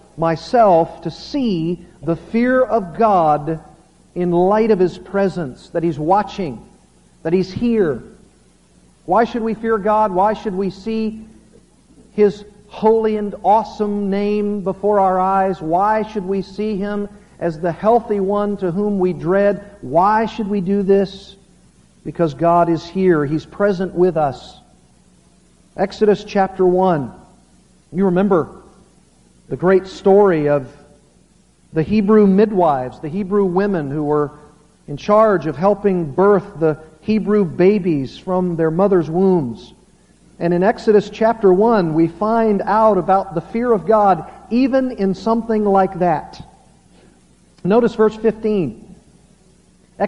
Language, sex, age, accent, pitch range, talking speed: English, male, 50-69, American, 170-215 Hz, 135 wpm